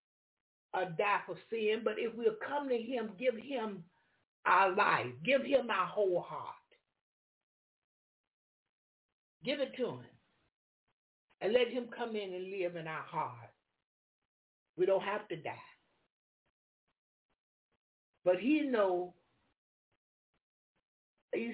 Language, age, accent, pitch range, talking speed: English, 60-79, American, 180-260 Hz, 115 wpm